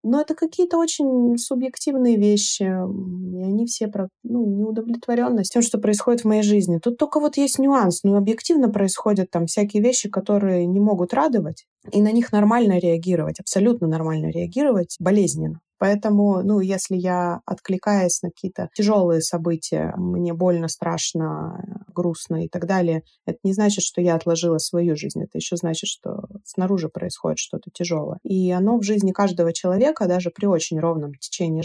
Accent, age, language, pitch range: native, 20-39, Russian, 175-230 Hz